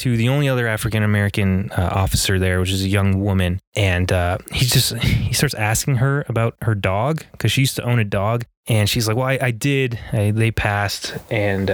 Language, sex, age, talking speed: English, male, 20-39, 205 wpm